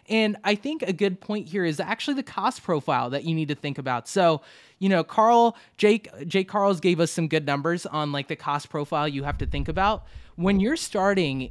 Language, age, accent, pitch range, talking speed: English, 20-39, American, 150-210 Hz, 225 wpm